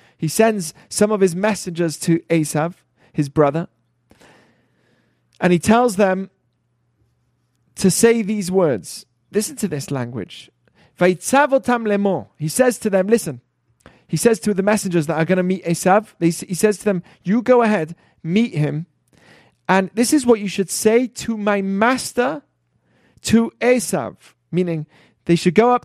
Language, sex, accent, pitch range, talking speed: English, male, British, 150-210 Hz, 150 wpm